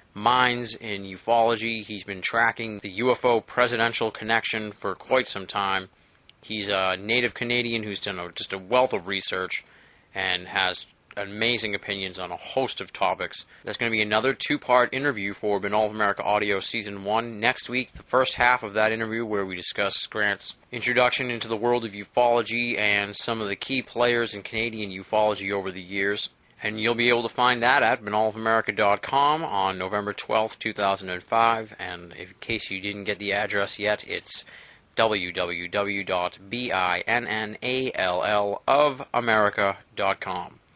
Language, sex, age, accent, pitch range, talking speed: English, male, 20-39, American, 100-125 Hz, 150 wpm